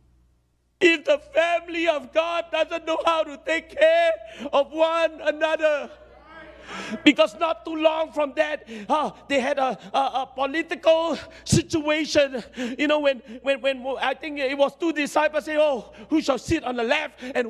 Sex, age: male, 50-69